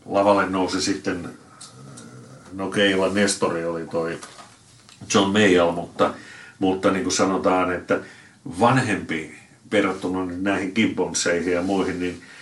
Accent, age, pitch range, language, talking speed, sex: native, 60-79, 85-95 Hz, Finnish, 110 wpm, male